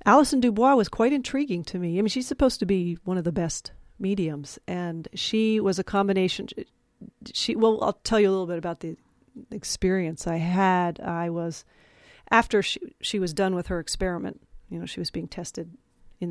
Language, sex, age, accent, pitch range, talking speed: English, female, 40-59, American, 180-210 Hz, 195 wpm